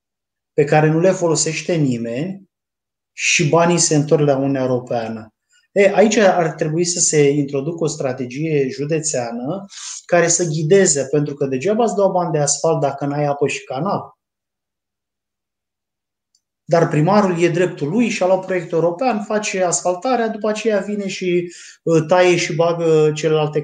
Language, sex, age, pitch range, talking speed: Romanian, male, 20-39, 135-170 Hz, 145 wpm